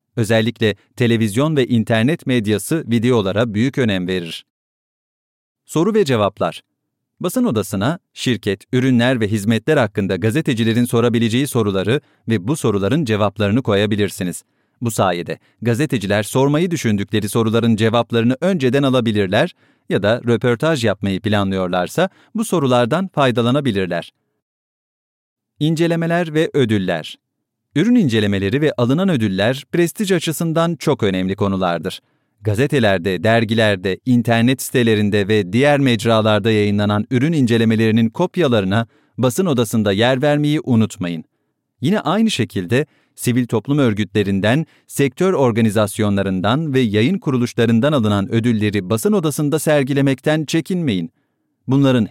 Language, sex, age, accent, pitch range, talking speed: English, male, 40-59, Turkish, 105-145 Hz, 105 wpm